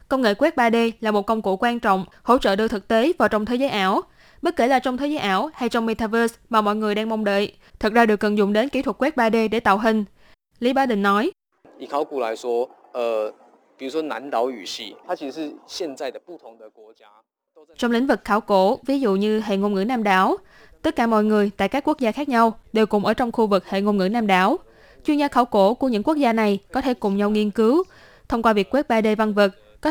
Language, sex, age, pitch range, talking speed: Vietnamese, female, 10-29, 205-260 Hz, 220 wpm